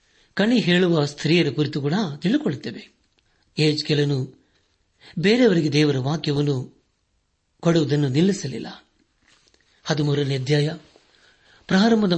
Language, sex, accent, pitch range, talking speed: Kannada, male, native, 145-175 Hz, 75 wpm